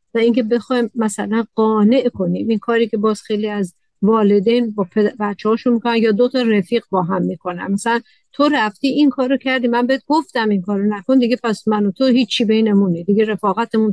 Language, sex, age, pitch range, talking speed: Persian, female, 50-69, 210-255 Hz, 185 wpm